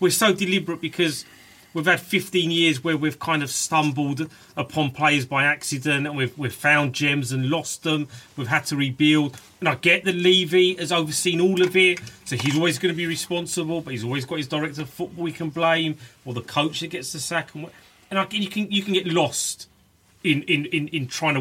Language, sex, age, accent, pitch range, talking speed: English, male, 30-49, British, 120-160 Hz, 215 wpm